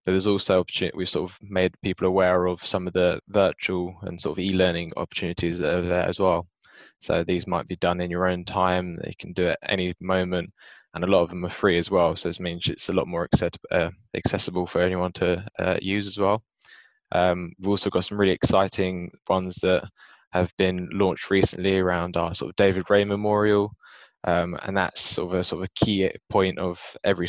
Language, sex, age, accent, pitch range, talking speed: English, male, 10-29, British, 90-95 Hz, 215 wpm